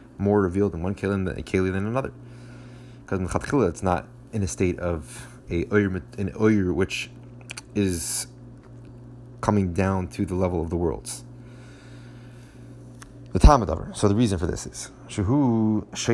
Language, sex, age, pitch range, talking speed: English, male, 30-49, 85-115 Hz, 140 wpm